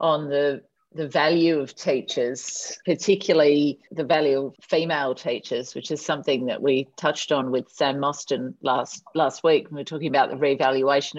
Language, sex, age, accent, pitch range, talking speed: English, female, 40-59, Australian, 150-190 Hz, 165 wpm